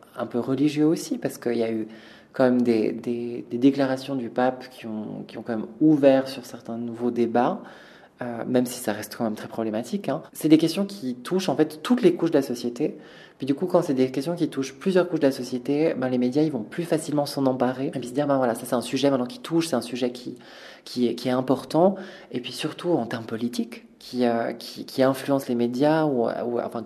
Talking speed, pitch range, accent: 250 wpm, 120-150 Hz, French